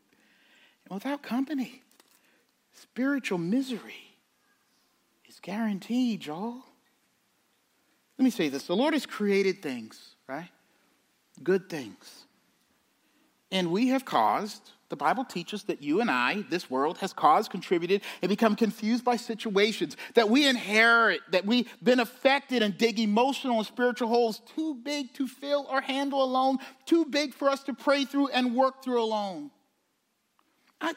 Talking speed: 140 wpm